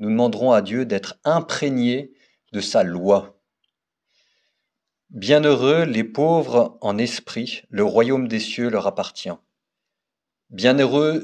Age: 50-69